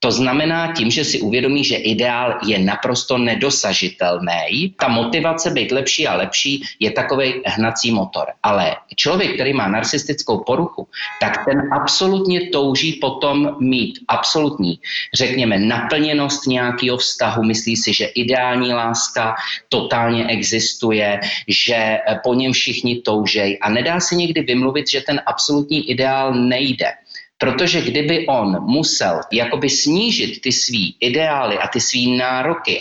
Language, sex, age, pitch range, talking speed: Slovak, male, 30-49, 115-145 Hz, 135 wpm